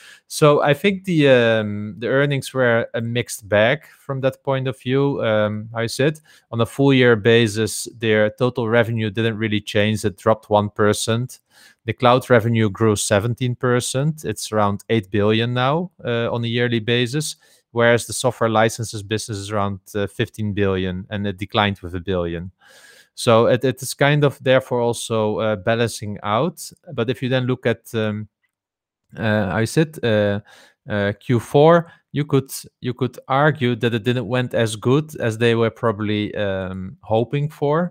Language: English